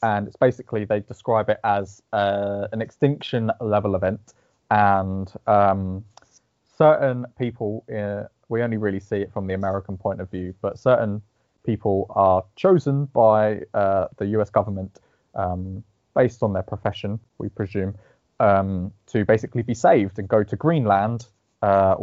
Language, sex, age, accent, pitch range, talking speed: English, male, 20-39, British, 95-120 Hz, 150 wpm